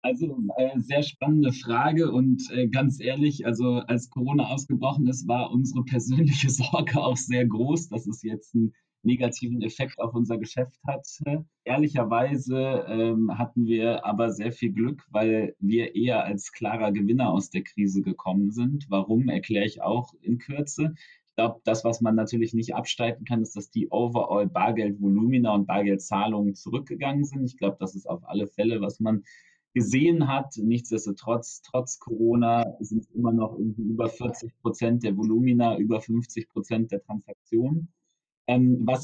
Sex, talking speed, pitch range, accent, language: male, 155 wpm, 105-130 Hz, German, German